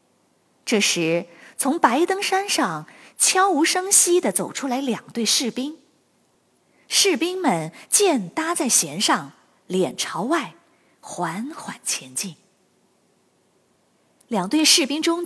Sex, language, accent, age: female, Chinese, native, 20-39